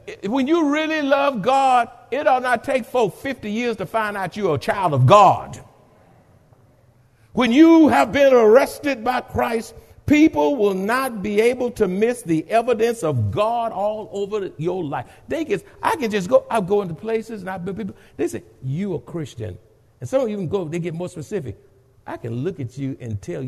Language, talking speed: English, 200 wpm